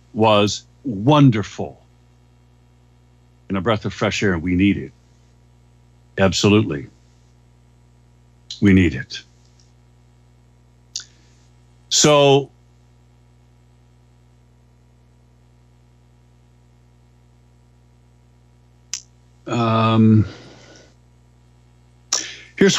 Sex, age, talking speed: male, 60-79, 45 wpm